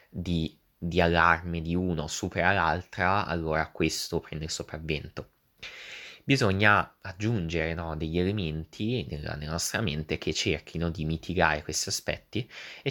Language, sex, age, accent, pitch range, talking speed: Italian, male, 20-39, native, 80-95 Hz, 125 wpm